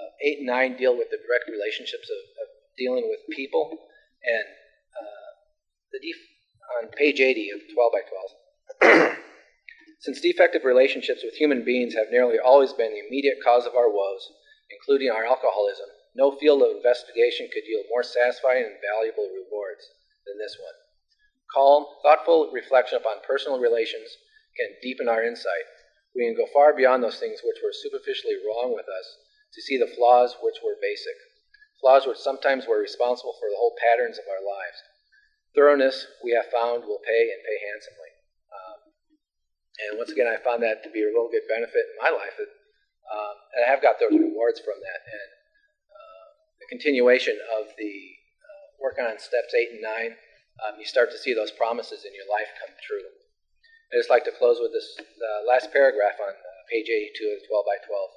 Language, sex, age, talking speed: English, male, 40-59, 185 wpm